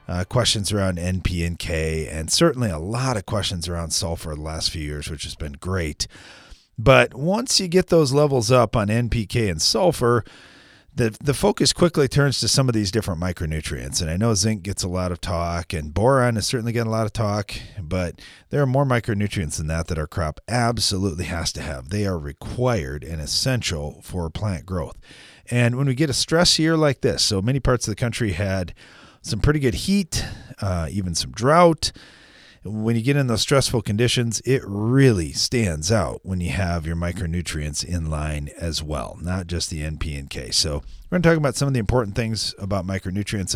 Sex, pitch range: male, 85-120 Hz